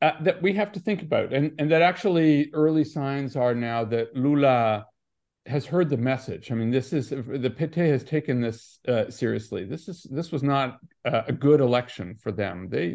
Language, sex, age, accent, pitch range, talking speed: English, male, 50-69, American, 110-155 Hz, 205 wpm